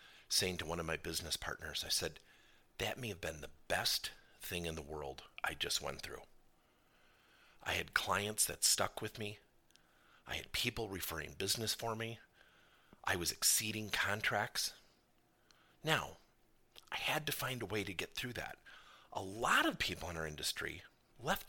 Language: English